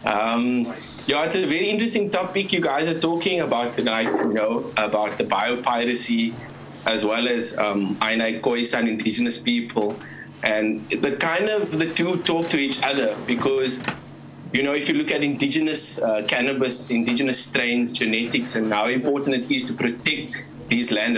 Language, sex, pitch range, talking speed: English, male, 115-145 Hz, 165 wpm